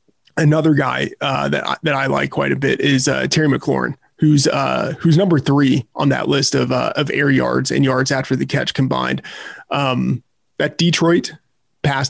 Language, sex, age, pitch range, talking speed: English, male, 30-49, 135-160 Hz, 190 wpm